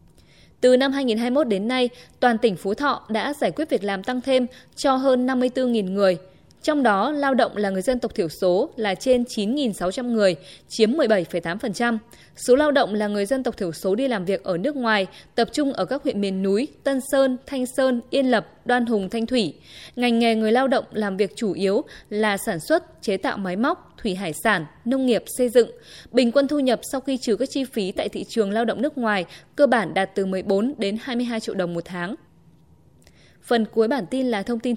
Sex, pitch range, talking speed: female, 200-260 Hz, 215 wpm